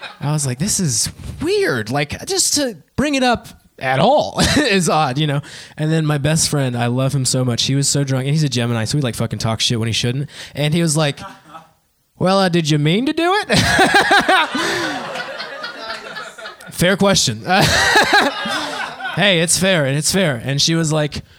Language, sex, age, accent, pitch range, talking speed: English, male, 20-39, American, 120-165 Hz, 195 wpm